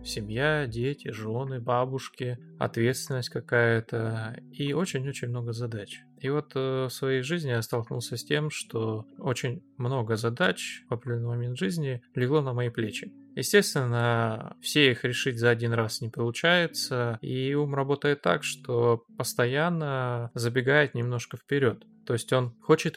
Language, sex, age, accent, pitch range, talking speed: Russian, male, 20-39, native, 120-150 Hz, 140 wpm